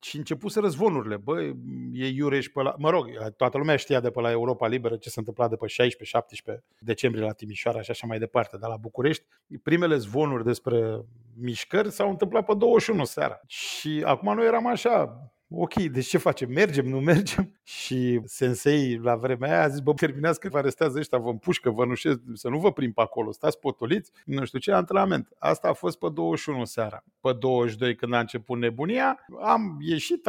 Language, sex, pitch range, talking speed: Romanian, male, 120-175 Hz, 195 wpm